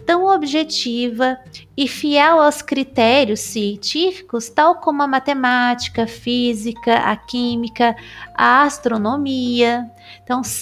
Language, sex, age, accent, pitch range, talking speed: Portuguese, female, 20-39, Brazilian, 220-295 Hz, 95 wpm